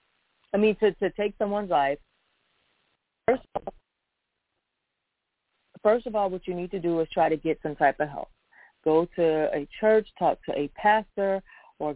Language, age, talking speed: English, 40-59, 165 wpm